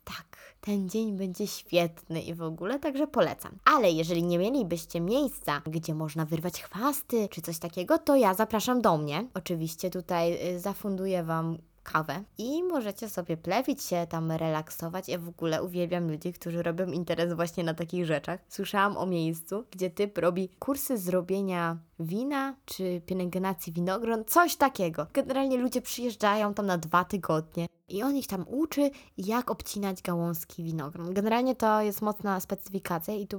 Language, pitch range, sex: Polish, 170-245 Hz, female